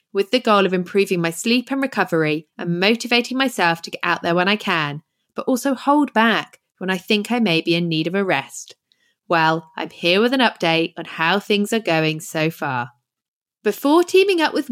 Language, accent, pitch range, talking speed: English, British, 170-235 Hz, 210 wpm